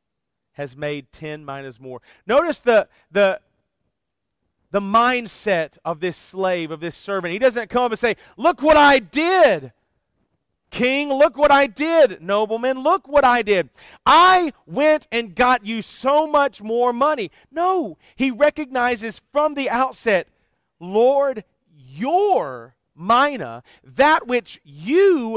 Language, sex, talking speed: English, male, 135 wpm